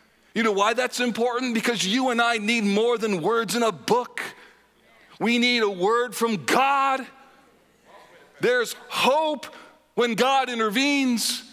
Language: English